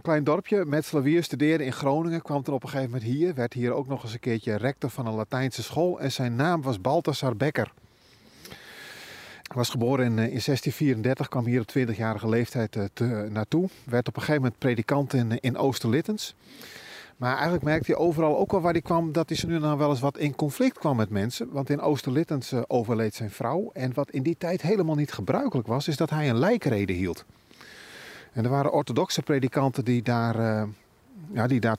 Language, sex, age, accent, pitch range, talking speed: Dutch, male, 40-59, Dutch, 120-155 Hz, 200 wpm